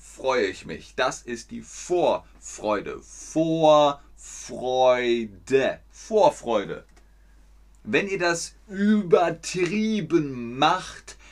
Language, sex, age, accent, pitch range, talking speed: German, male, 30-49, German, 115-185 Hz, 75 wpm